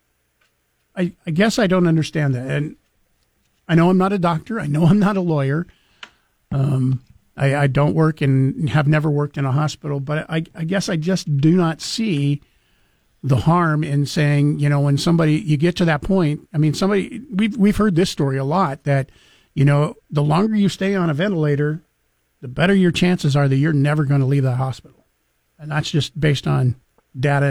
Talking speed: 205 wpm